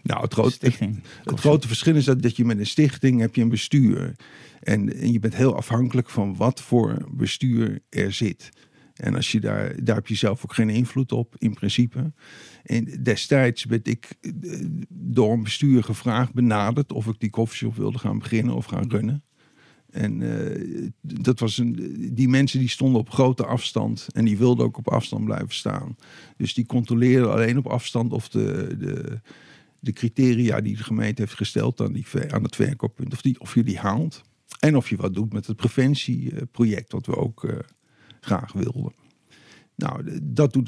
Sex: male